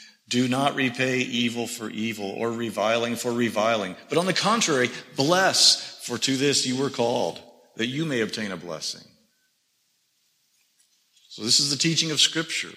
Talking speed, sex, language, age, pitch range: 160 wpm, male, English, 50-69, 115-140 Hz